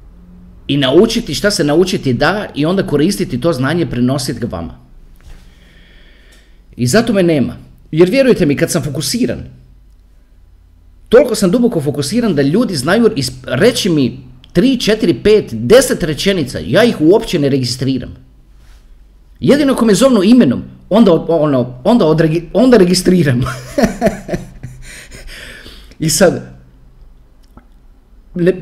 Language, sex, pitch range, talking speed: Croatian, male, 125-185 Hz, 120 wpm